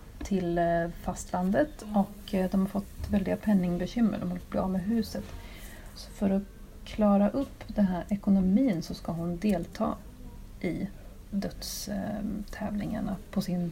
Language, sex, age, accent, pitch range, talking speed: Swedish, female, 30-49, native, 175-205 Hz, 130 wpm